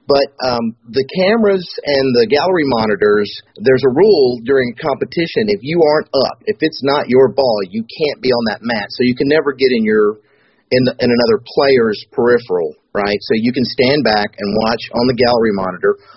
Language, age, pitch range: English, 40-59, 110-170 Hz